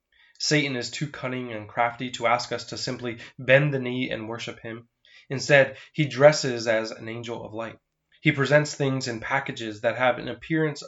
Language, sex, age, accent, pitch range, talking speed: English, male, 20-39, American, 120-140 Hz, 190 wpm